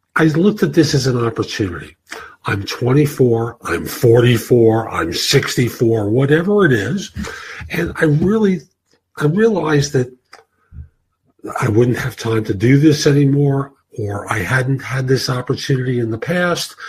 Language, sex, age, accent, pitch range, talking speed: English, male, 50-69, American, 105-140 Hz, 140 wpm